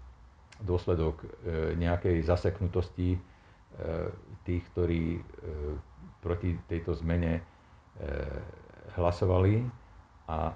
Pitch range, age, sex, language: 80-95 Hz, 50-69, male, Slovak